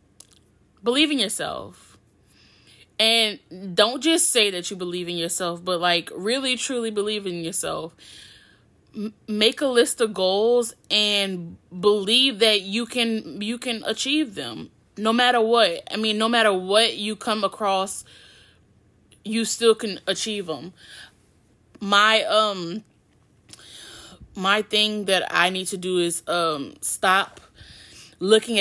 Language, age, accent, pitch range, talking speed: English, 10-29, American, 165-220 Hz, 130 wpm